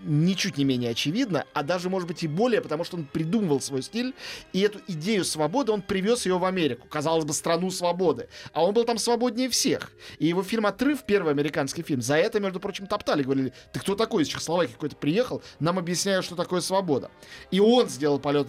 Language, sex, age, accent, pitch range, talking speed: Russian, male, 30-49, native, 145-210 Hz, 210 wpm